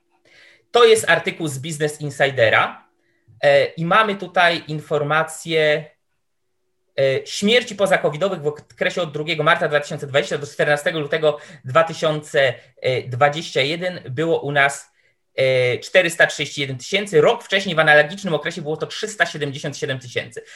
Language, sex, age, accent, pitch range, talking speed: Polish, male, 20-39, native, 140-175 Hz, 105 wpm